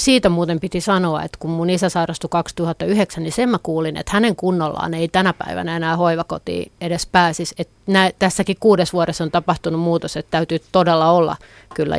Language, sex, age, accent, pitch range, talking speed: Finnish, female, 30-49, native, 165-195 Hz, 185 wpm